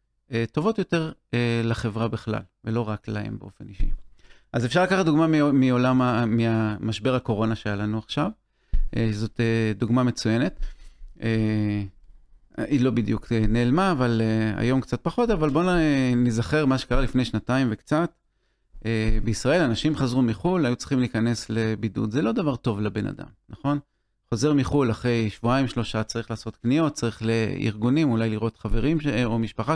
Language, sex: Hebrew, male